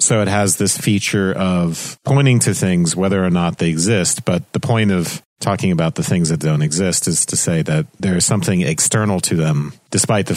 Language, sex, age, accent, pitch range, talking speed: English, male, 40-59, American, 85-115 Hz, 215 wpm